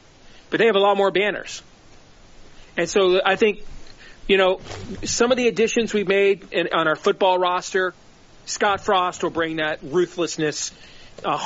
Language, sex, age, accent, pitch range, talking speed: English, male, 40-59, American, 165-205 Hz, 155 wpm